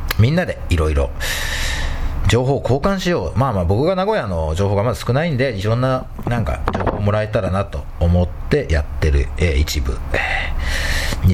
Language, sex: Japanese, male